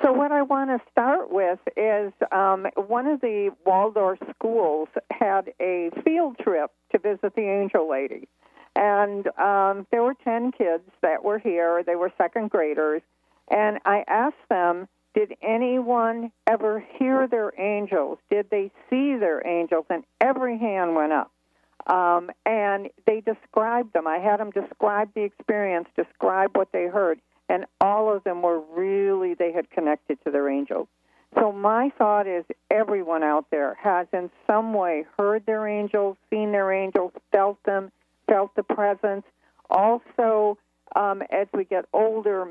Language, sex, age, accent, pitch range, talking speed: English, female, 50-69, American, 185-220 Hz, 155 wpm